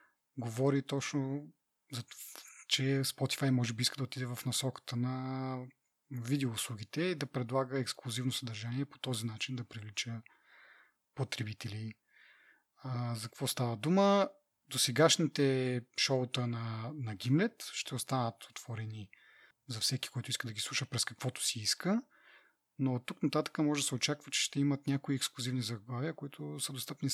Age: 30-49